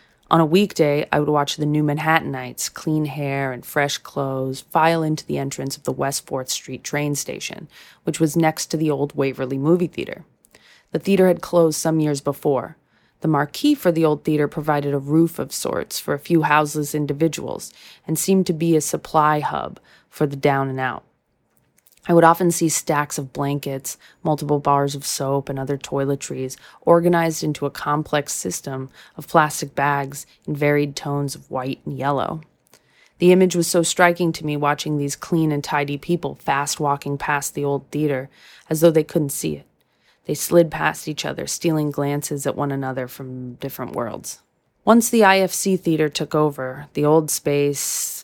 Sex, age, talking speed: female, 30-49, 180 wpm